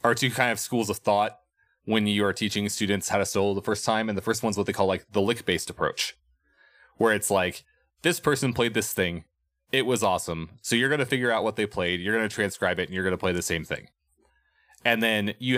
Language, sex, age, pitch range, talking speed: English, male, 20-39, 95-115 Hz, 255 wpm